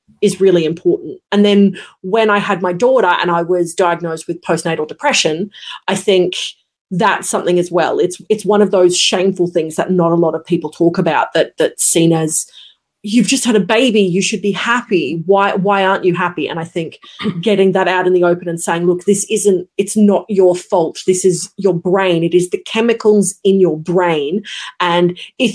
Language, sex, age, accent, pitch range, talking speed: English, female, 30-49, Australian, 175-215 Hz, 205 wpm